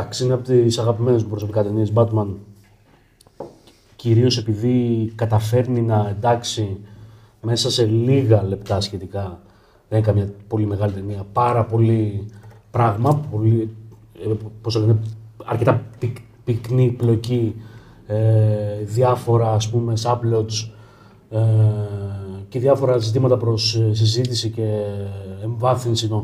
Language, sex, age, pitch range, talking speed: Greek, male, 30-49, 110-120 Hz, 95 wpm